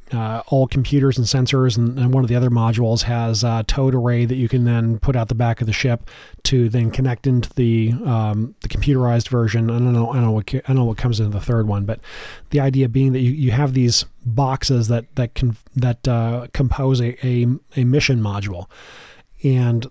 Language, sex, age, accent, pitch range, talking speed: English, male, 30-49, American, 115-135 Hz, 230 wpm